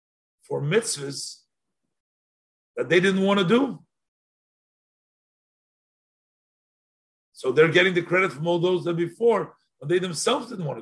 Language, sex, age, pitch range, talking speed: English, male, 50-69, 145-220 Hz, 135 wpm